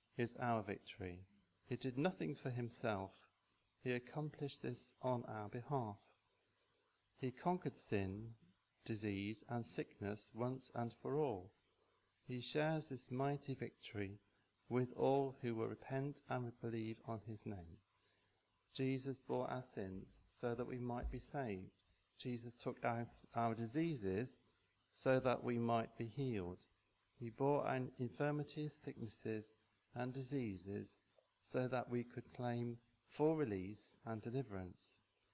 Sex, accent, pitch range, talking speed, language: male, British, 100-125 Hz, 130 wpm, English